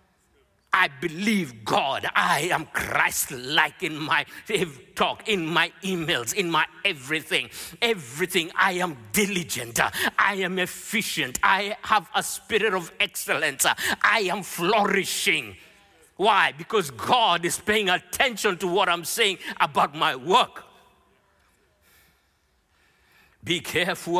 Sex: male